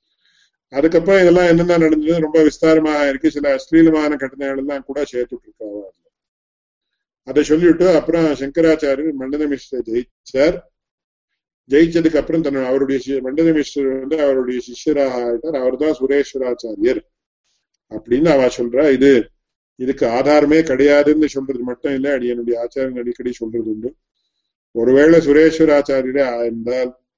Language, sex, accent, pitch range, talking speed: English, male, Indian, 125-155 Hz, 35 wpm